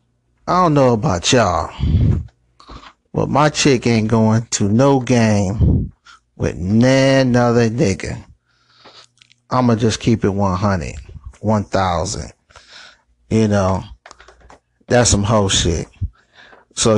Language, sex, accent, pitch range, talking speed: English, male, American, 100-120 Hz, 105 wpm